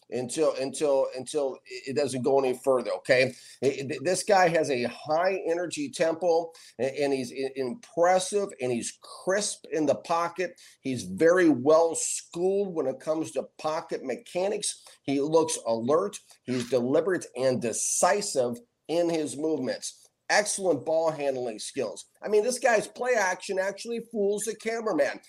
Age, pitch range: 50-69, 145-200 Hz